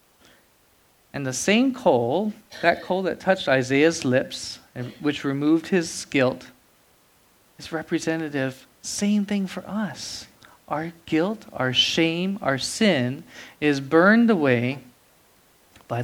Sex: male